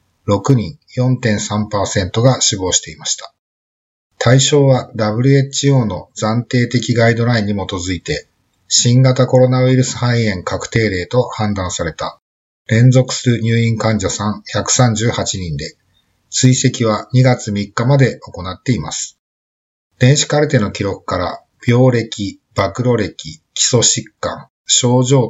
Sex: male